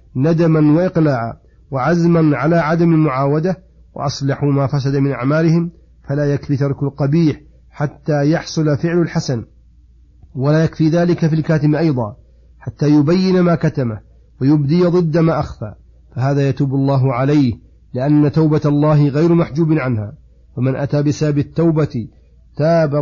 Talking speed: 125 wpm